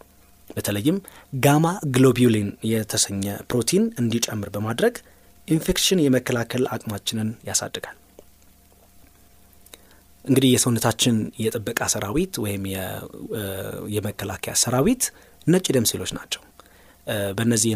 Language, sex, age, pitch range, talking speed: Amharic, male, 30-49, 100-130 Hz, 80 wpm